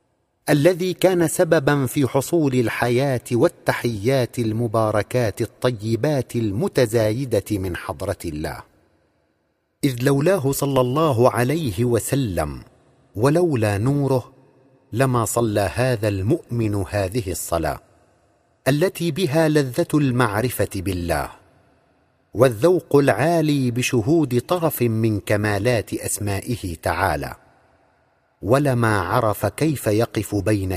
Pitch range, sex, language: 105-145 Hz, male, Arabic